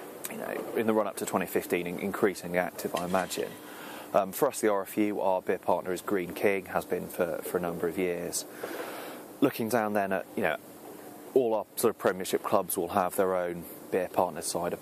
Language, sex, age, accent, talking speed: English, male, 30-49, British, 200 wpm